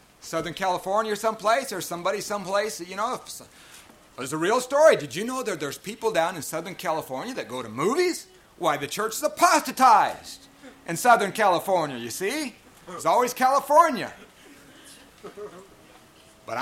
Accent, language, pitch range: American, English, 145-200 Hz